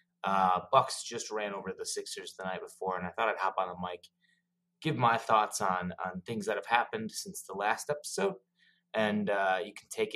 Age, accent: 20-39, American